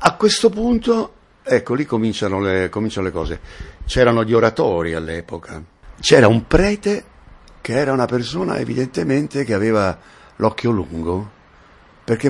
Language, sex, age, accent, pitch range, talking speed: Italian, male, 60-79, native, 85-110 Hz, 130 wpm